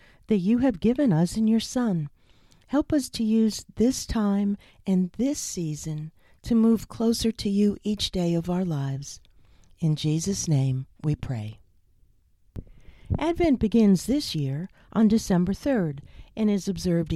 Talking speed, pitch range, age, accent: 145 wpm, 170-240 Hz, 50-69, American